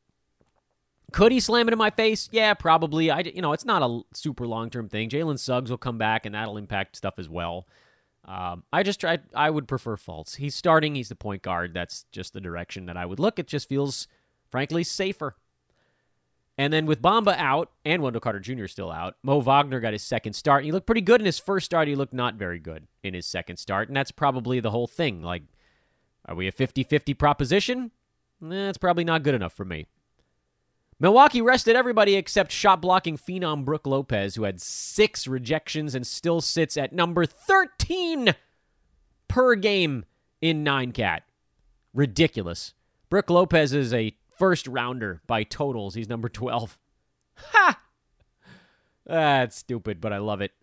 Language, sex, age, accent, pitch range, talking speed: English, male, 30-49, American, 100-170 Hz, 180 wpm